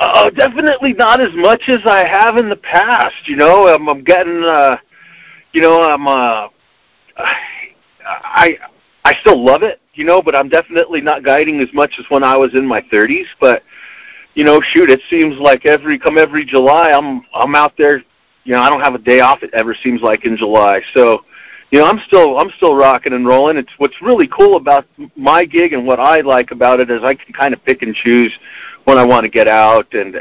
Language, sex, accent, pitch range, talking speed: English, male, American, 120-165 Hz, 220 wpm